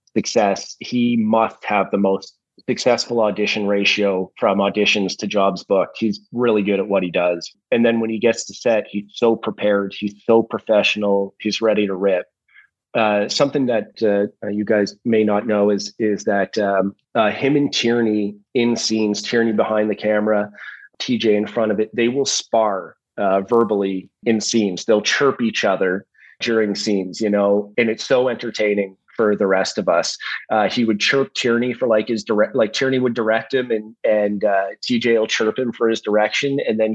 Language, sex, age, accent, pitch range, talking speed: English, male, 30-49, American, 100-115 Hz, 190 wpm